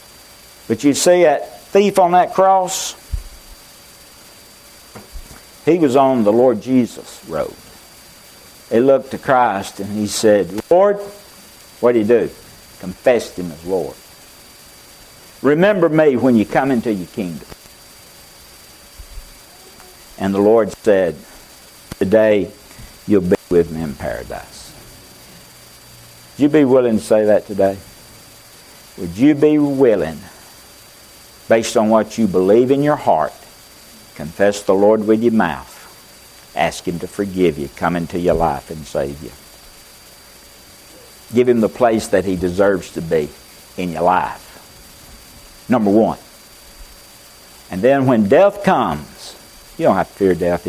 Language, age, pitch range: English, 60-79, 90-125 Hz